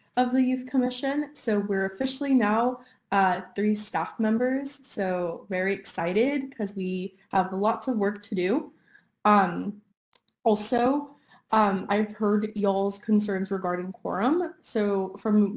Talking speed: 130 wpm